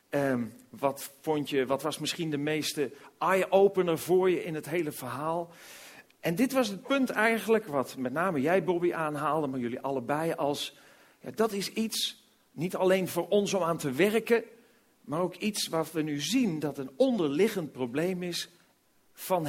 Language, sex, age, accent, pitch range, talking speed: Dutch, male, 40-59, Dutch, 145-205 Hz, 165 wpm